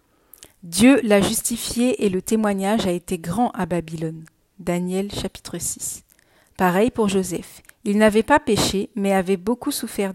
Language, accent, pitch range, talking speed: French, French, 185-220 Hz, 150 wpm